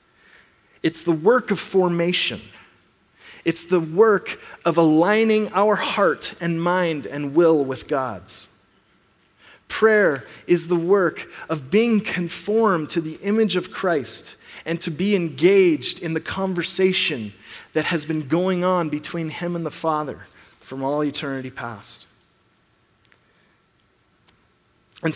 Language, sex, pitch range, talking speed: English, male, 140-185 Hz, 125 wpm